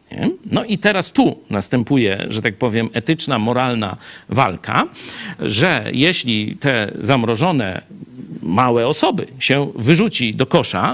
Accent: native